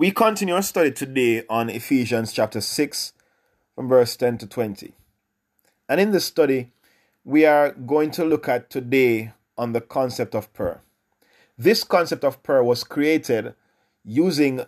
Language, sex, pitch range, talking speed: English, male, 115-145 Hz, 150 wpm